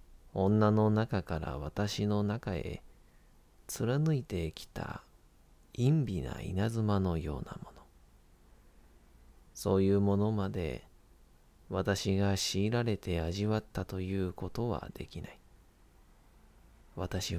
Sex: male